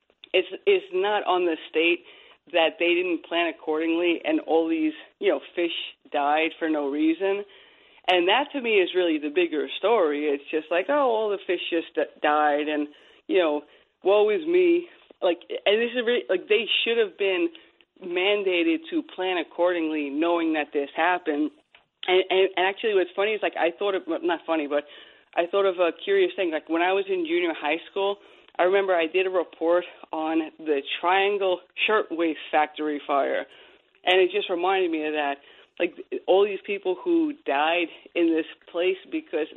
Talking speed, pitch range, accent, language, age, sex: 180 wpm, 160-220 Hz, American, English, 30-49, female